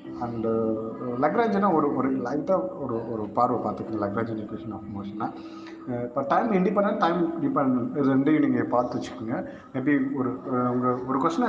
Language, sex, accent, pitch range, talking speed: Tamil, male, native, 125-190 Hz, 145 wpm